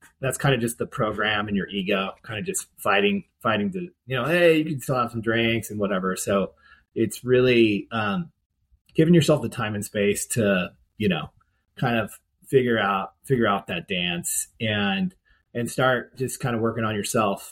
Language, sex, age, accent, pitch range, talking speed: English, male, 30-49, American, 105-130 Hz, 190 wpm